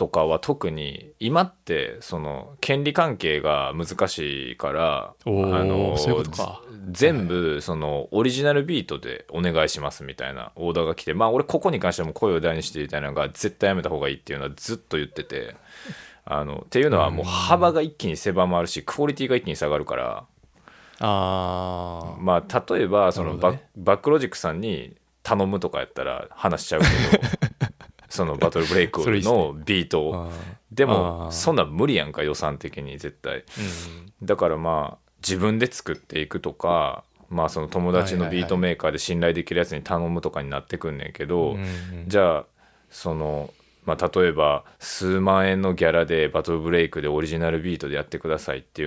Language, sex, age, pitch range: Japanese, male, 20-39, 75-100 Hz